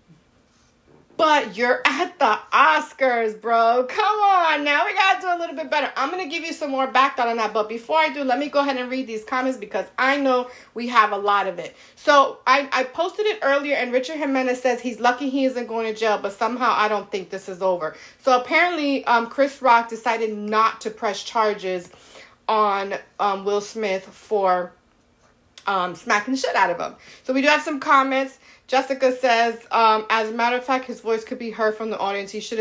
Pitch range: 210-265 Hz